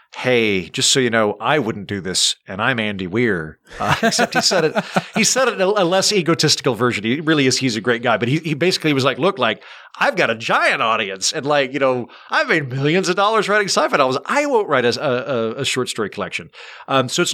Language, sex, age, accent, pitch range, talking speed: English, male, 40-59, American, 115-150 Hz, 240 wpm